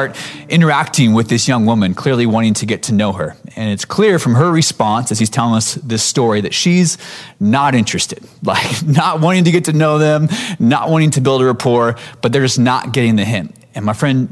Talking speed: 220 wpm